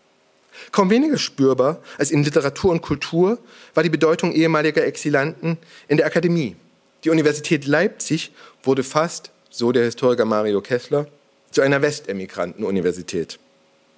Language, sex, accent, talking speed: German, male, German, 125 wpm